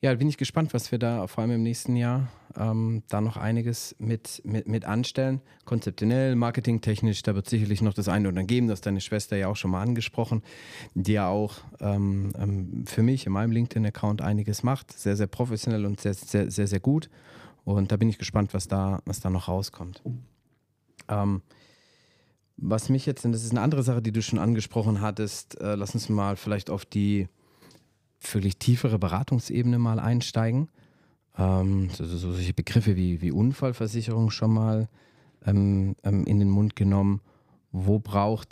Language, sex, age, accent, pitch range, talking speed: German, male, 30-49, German, 100-120 Hz, 175 wpm